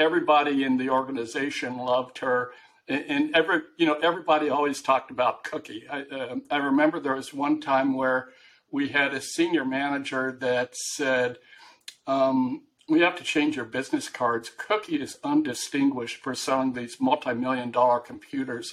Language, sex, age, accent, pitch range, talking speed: English, male, 60-79, American, 130-185 Hz, 155 wpm